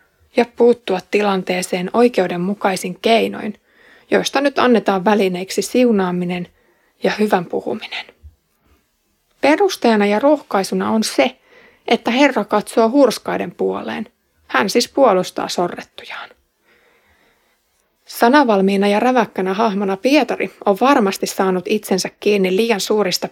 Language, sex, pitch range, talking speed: Finnish, female, 190-240 Hz, 100 wpm